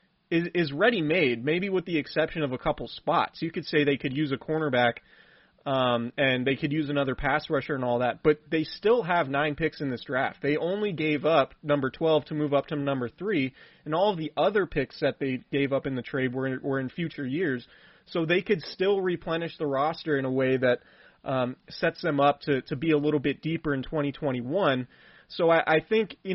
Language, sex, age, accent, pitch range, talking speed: English, male, 30-49, American, 135-170 Hz, 220 wpm